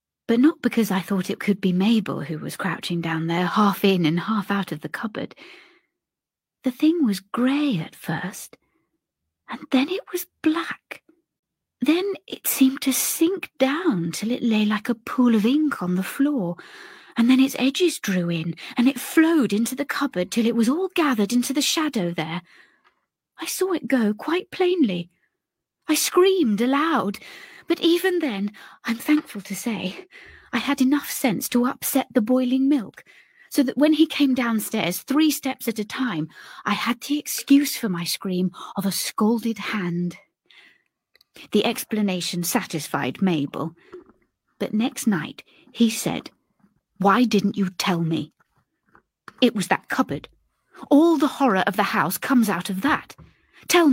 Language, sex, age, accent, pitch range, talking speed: English, female, 30-49, British, 195-290 Hz, 165 wpm